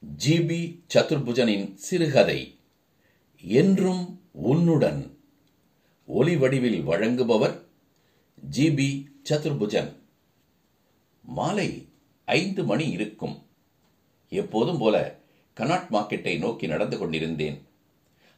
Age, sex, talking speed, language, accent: 60-79, male, 65 wpm, Tamil, native